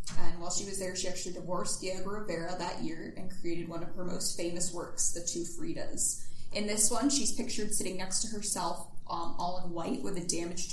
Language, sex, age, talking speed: English, female, 10-29, 220 wpm